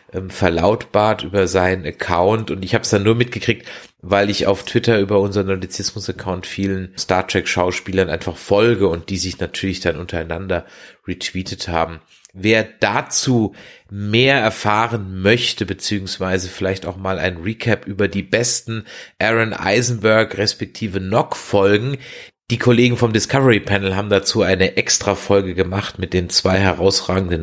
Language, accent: German, German